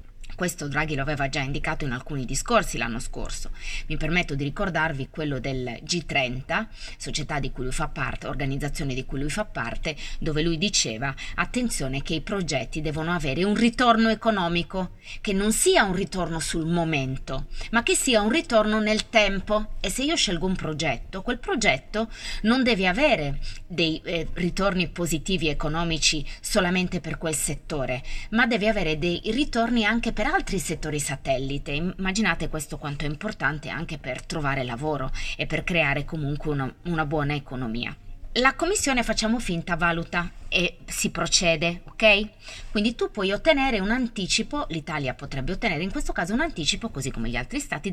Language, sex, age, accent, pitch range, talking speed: Italian, female, 20-39, native, 140-210 Hz, 165 wpm